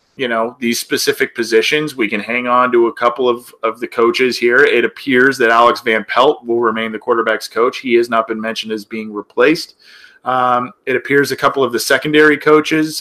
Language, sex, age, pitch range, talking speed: English, male, 30-49, 115-150 Hz, 210 wpm